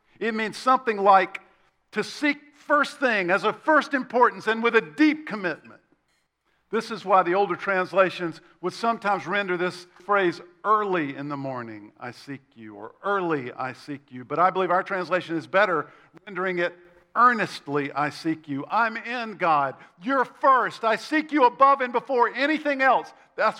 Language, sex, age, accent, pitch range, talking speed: English, male, 50-69, American, 190-255 Hz, 170 wpm